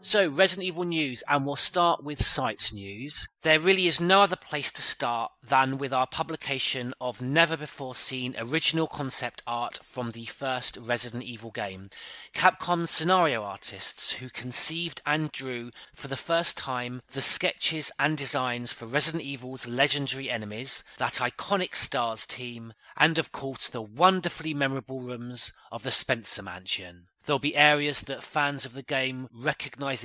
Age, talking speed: 30-49, 155 wpm